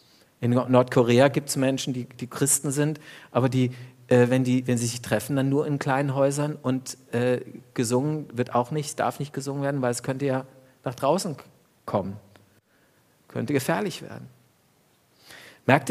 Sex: male